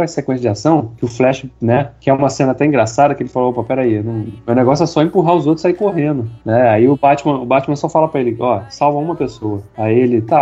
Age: 20-39